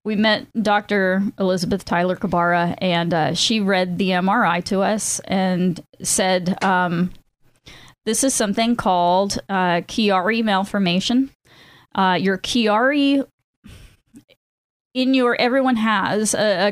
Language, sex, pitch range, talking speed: English, female, 185-225 Hz, 120 wpm